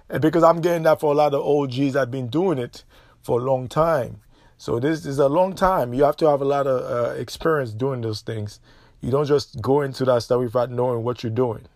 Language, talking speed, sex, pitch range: English, 240 wpm, male, 125-155 Hz